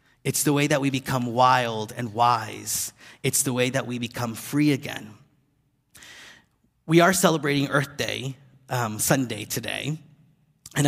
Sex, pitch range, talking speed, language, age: male, 120-150 Hz, 145 wpm, English, 30-49